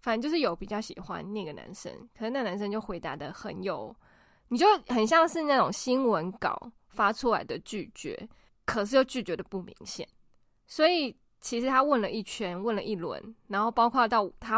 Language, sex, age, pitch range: Chinese, female, 20-39, 185-235 Hz